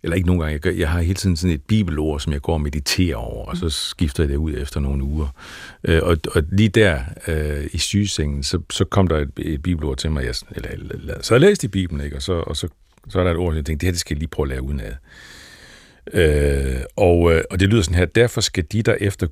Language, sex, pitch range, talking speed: Danish, male, 75-105 Hz, 250 wpm